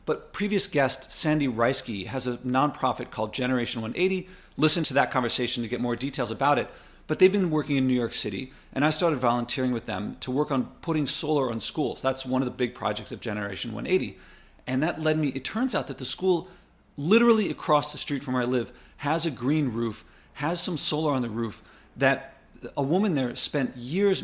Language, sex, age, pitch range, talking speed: English, male, 40-59, 125-155 Hz, 210 wpm